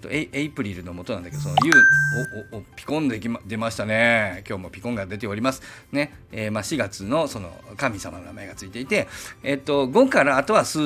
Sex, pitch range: male, 100-135 Hz